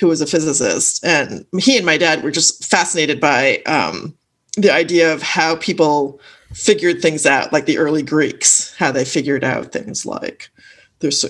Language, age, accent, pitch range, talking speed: English, 40-59, American, 175-245 Hz, 175 wpm